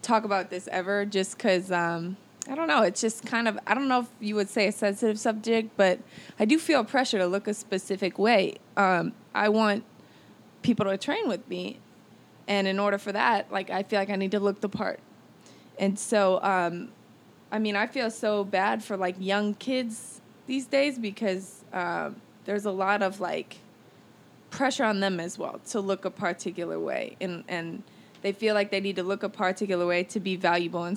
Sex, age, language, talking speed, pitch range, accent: female, 20-39, English, 205 wpm, 195-220 Hz, American